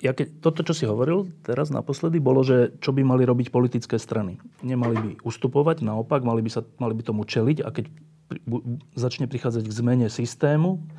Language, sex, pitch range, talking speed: Slovak, male, 115-145 Hz, 195 wpm